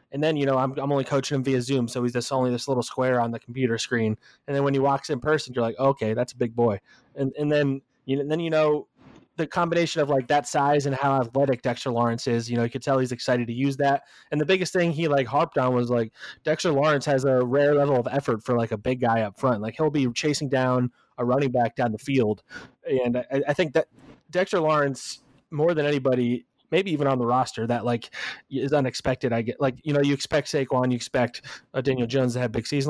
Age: 20-39